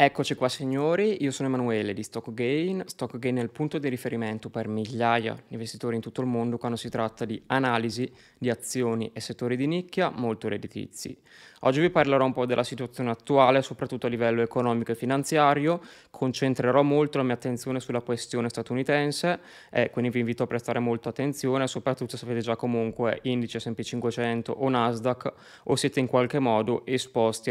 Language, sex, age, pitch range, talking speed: Italian, male, 20-39, 115-135 Hz, 175 wpm